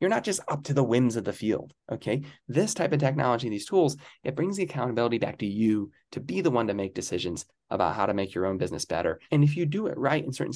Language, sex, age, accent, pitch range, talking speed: English, male, 20-39, American, 110-145 Hz, 265 wpm